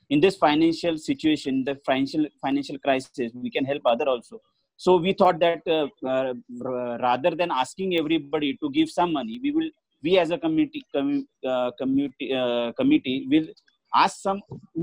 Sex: male